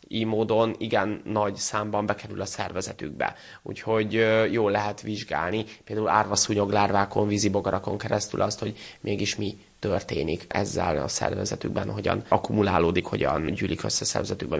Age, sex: 20-39, male